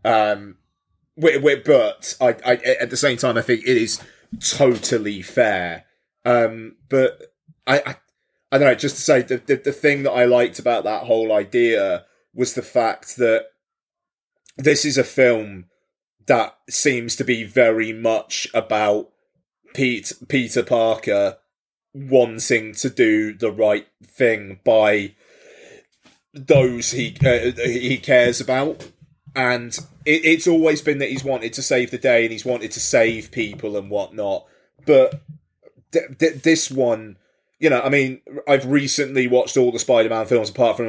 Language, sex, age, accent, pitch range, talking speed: English, male, 30-49, British, 110-140 Hz, 150 wpm